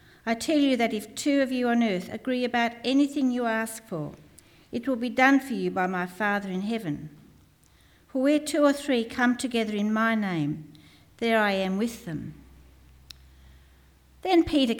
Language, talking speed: English, 180 wpm